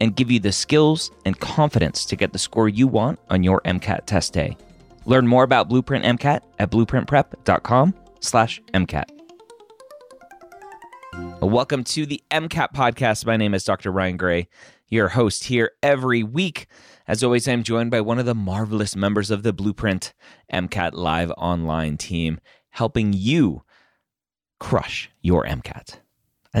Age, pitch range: 30-49, 90-125 Hz